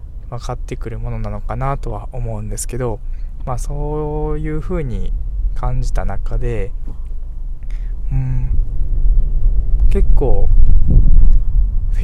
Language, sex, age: Japanese, male, 20-39